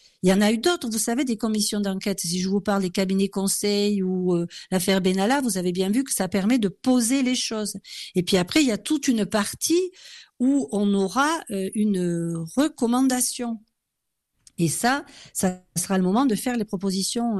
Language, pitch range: French, 190-255 Hz